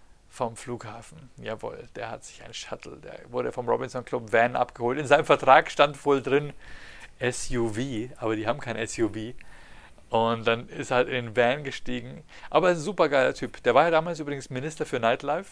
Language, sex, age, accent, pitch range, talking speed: German, male, 50-69, German, 115-155 Hz, 185 wpm